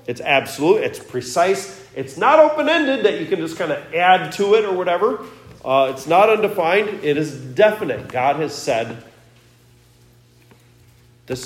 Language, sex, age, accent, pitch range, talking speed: English, male, 40-59, American, 95-145 Hz, 150 wpm